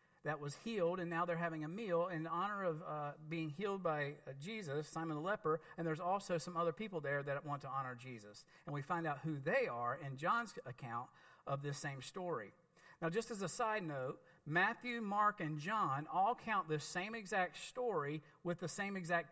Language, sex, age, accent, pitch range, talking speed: English, male, 50-69, American, 155-205 Hz, 210 wpm